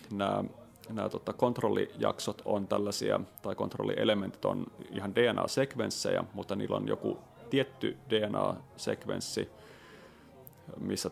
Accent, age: native, 30-49